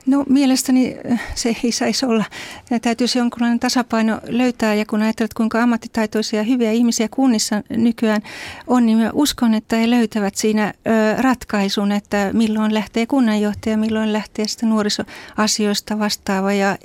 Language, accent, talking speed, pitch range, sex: Finnish, native, 140 wpm, 195-225 Hz, female